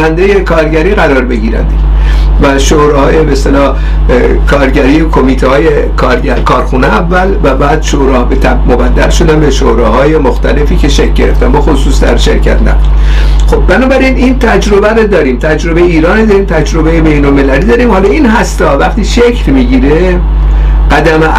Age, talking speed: 50-69, 130 wpm